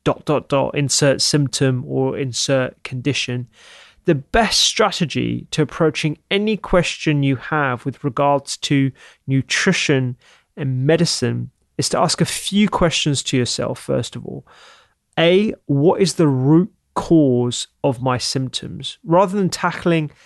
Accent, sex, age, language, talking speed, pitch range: British, male, 30-49, English, 135 wpm, 135-160 Hz